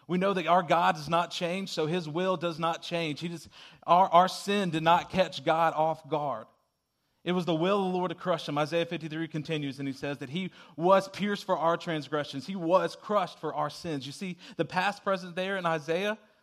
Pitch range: 130-170 Hz